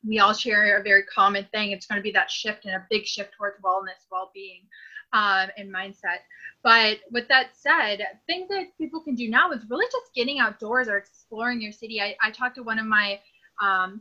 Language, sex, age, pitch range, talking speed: English, female, 20-39, 195-230 Hz, 215 wpm